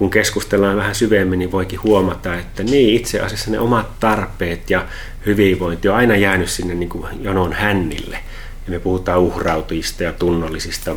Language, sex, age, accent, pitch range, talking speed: Finnish, male, 30-49, native, 85-100 Hz, 165 wpm